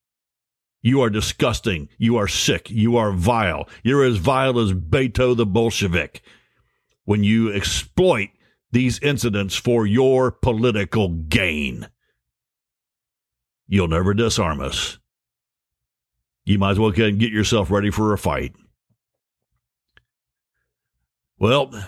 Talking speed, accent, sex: 110 wpm, American, male